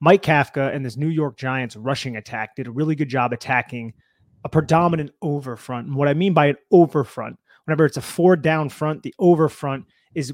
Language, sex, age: English, male, 30-49